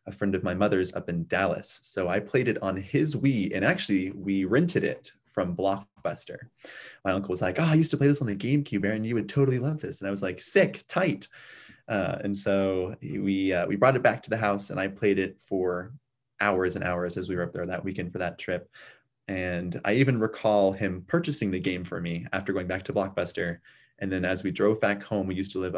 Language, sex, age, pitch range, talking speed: English, male, 20-39, 95-125 Hz, 240 wpm